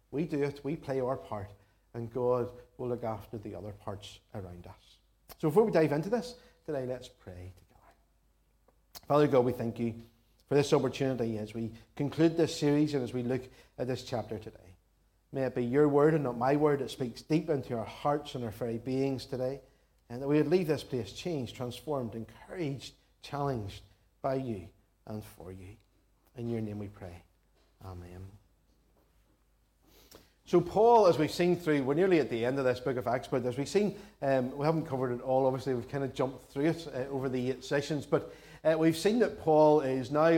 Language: English